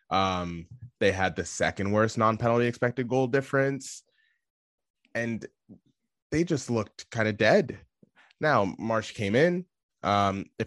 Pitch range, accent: 100-125 Hz, American